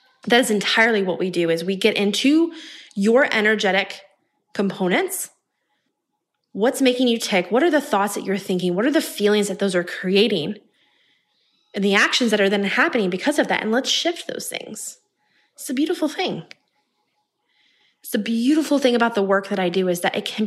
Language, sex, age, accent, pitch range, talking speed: English, female, 20-39, American, 195-255 Hz, 190 wpm